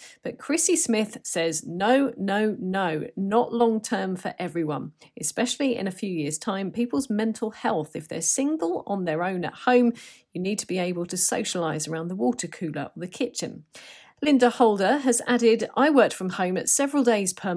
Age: 40-59